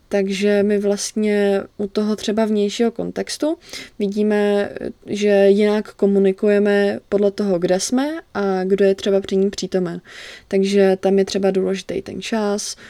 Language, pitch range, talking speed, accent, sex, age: Czech, 190-205 Hz, 140 wpm, native, female, 20-39